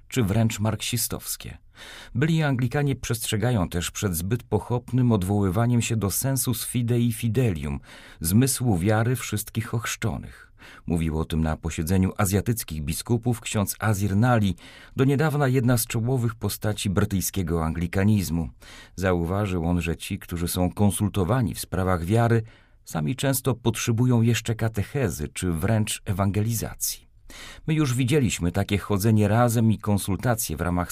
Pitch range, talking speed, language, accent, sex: 95-120 Hz, 130 wpm, Polish, native, male